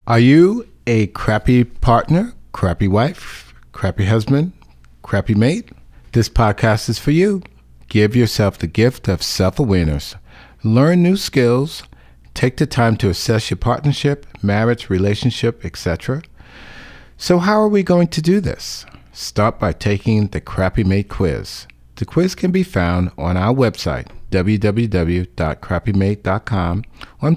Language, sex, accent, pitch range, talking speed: English, male, American, 95-130 Hz, 130 wpm